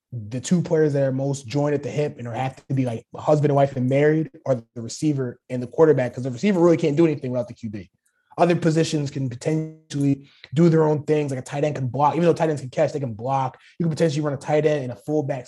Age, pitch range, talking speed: 20-39, 135-165 Hz, 275 wpm